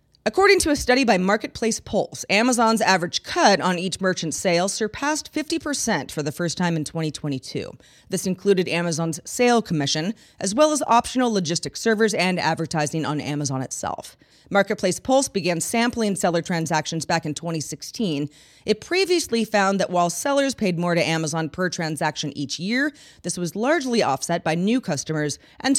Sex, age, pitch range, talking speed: female, 30-49, 165-225 Hz, 160 wpm